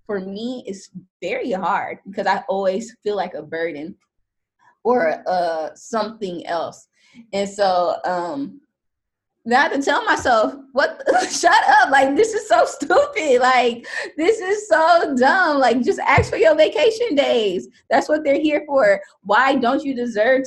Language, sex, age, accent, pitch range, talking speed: English, female, 20-39, American, 215-290 Hz, 160 wpm